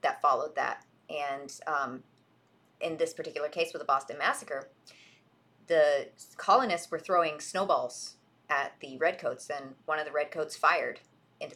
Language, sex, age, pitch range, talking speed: English, female, 30-49, 150-190 Hz, 145 wpm